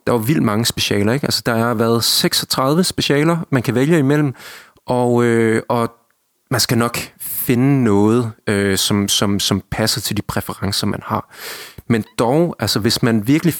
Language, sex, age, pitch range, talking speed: Danish, male, 30-49, 110-140 Hz, 175 wpm